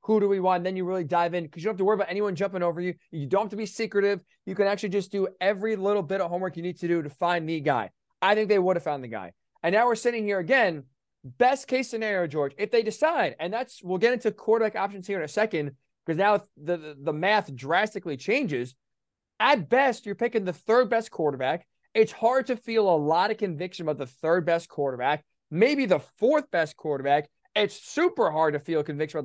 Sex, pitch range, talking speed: male, 175-240 Hz, 240 wpm